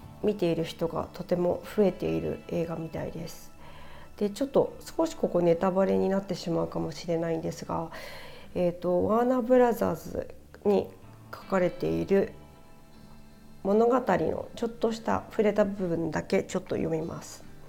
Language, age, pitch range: Japanese, 40-59, 170-220 Hz